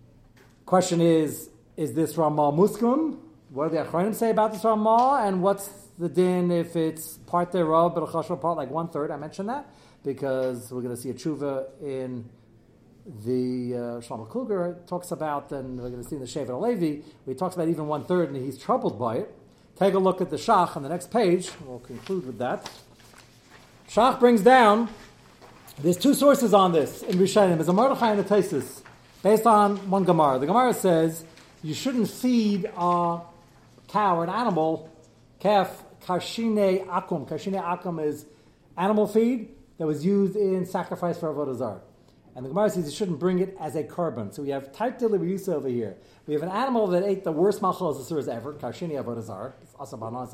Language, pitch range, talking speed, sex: English, 140-200 Hz, 185 wpm, male